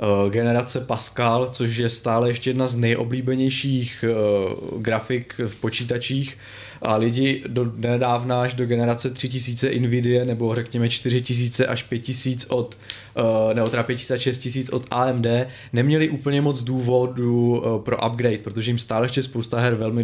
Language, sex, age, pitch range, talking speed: Czech, male, 20-39, 110-130 Hz, 140 wpm